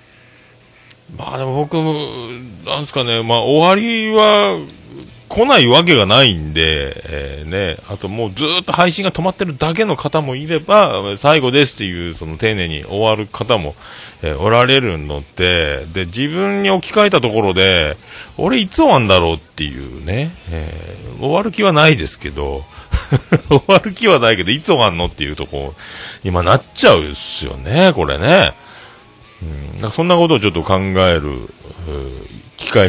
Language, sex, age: Japanese, male, 40-59